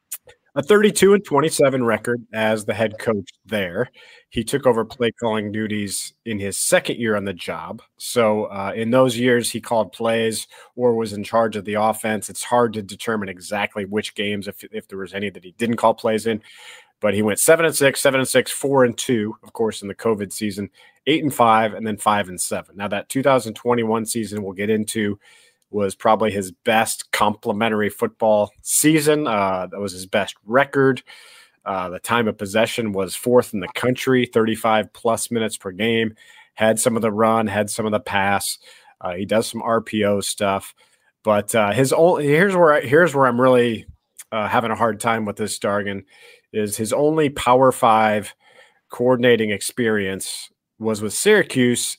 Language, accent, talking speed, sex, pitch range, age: English, American, 185 wpm, male, 105-125 Hz, 30-49